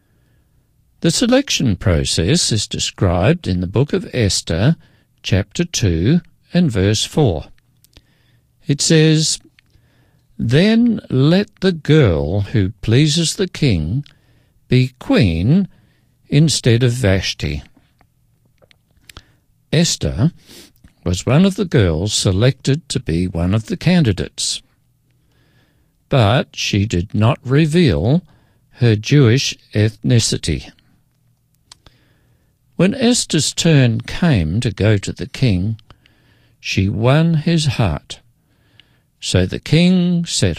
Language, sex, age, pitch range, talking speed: English, male, 60-79, 100-150 Hz, 100 wpm